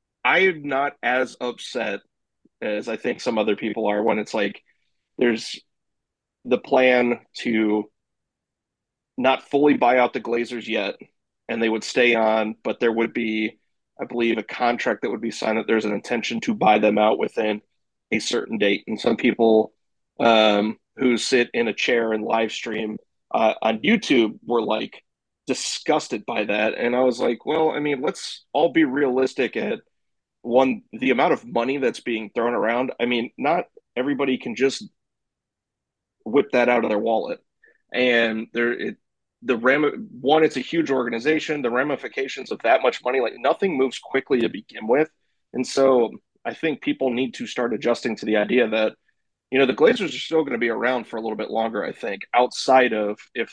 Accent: American